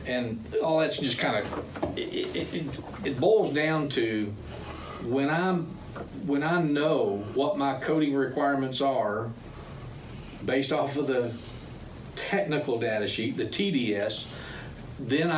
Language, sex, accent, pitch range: English, male, American, 115-145 Hz